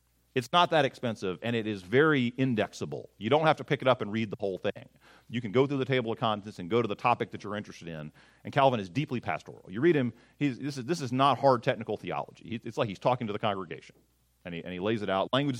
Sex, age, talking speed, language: male, 40-59, 270 wpm, English